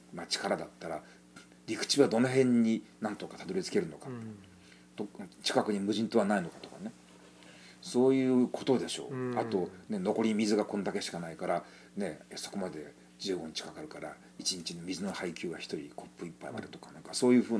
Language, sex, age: Japanese, male, 40-59